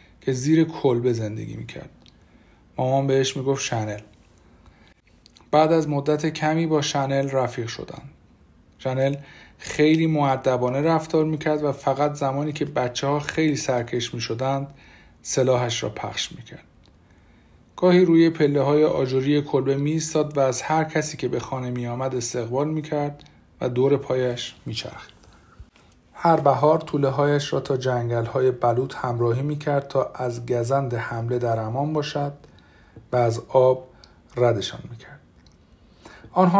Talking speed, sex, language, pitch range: 130 wpm, male, Persian, 120-150 Hz